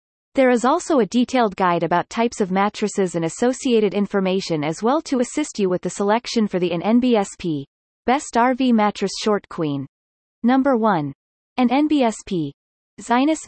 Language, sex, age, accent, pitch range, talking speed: English, female, 30-49, American, 180-240 Hz, 155 wpm